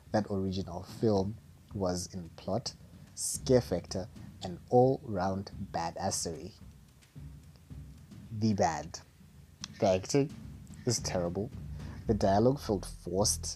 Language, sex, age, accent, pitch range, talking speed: English, male, 30-49, South African, 85-110 Hz, 95 wpm